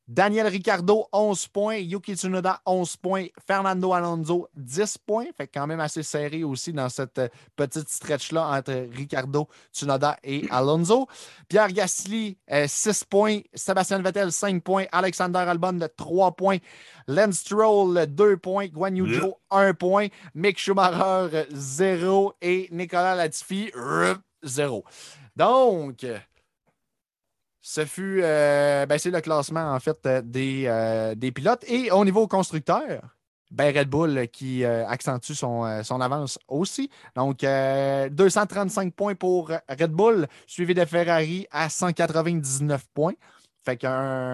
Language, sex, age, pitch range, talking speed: French, male, 30-49, 140-190 Hz, 135 wpm